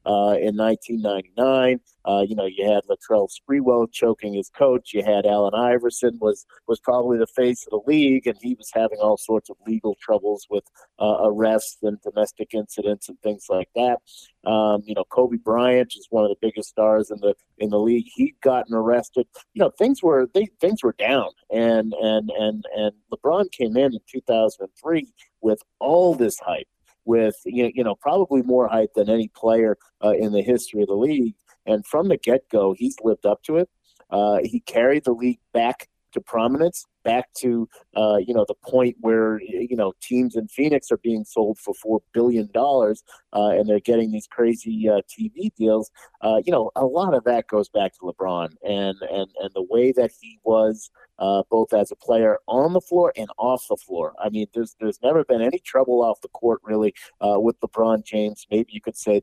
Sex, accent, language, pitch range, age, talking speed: male, American, English, 105-125 Hz, 50-69, 200 wpm